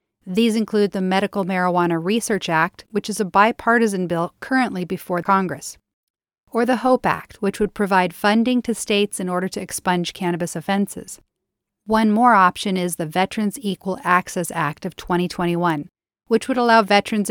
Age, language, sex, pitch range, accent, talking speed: 40-59, English, female, 175-220 Hz, American, 160 wpm